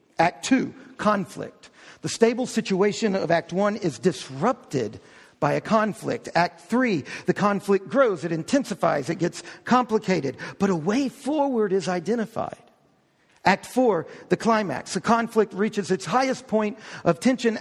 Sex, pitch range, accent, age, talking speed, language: male, 190-245 Hz, American, 50-69, 145 wpm, English